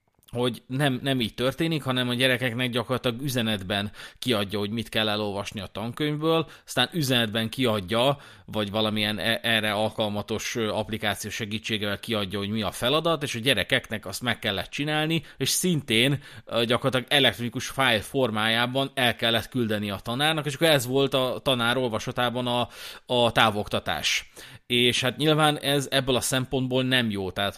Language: Hungarian